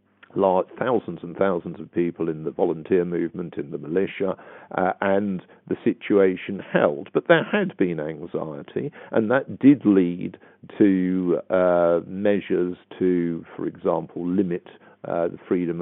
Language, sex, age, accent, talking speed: English, male, 50-69, British, 135 wpm